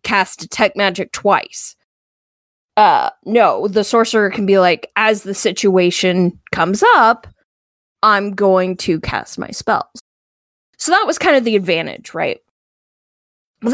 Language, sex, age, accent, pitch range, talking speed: English, female, 20-39, American, 195-240 Hz, 135 wpm